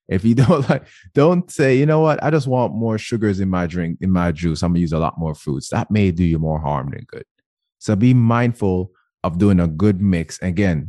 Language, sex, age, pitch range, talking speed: English, male, 20-39, 85-115 Hz, 240 wpm